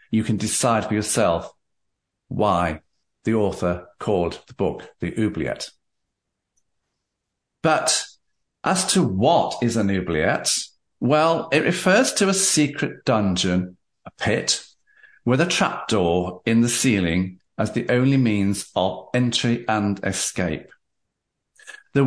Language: English